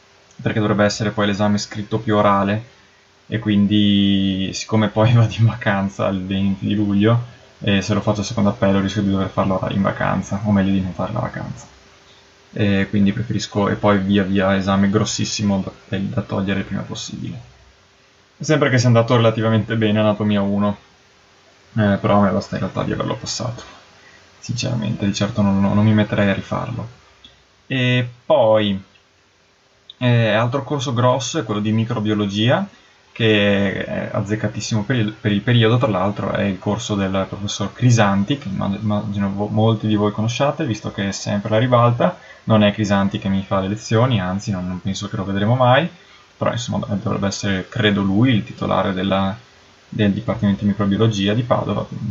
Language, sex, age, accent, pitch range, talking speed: Italian, male, 20-39, native, 100-110 Hz, 175 wpm